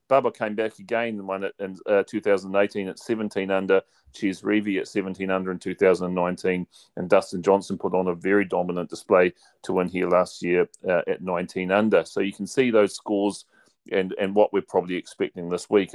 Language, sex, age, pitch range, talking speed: English, male, 40-59, 95-140 Hz, 190 wpm